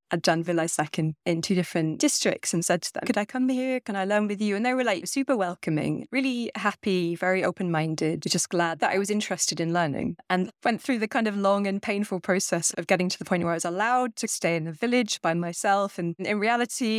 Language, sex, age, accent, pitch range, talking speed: English, female, 20-39, British, 175-215 Hz, 235 wpm